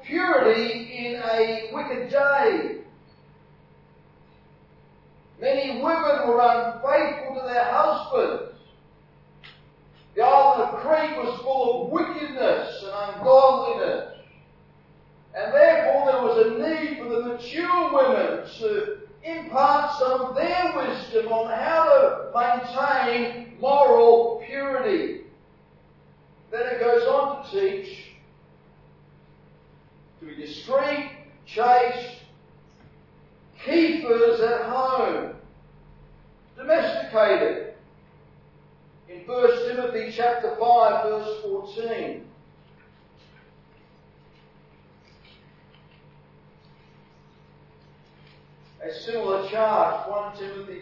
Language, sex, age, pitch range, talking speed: English, male, 40-59, 210-285 Hz, 85 wpm